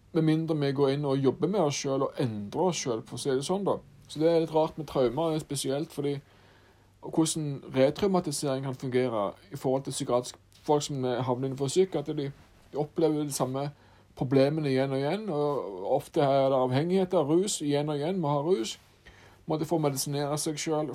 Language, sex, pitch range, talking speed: English, male, 125-160 Hz, 205 wpm